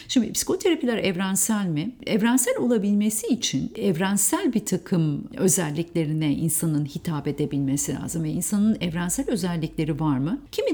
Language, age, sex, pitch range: Turkish, 50-69, female, 155-215 Hz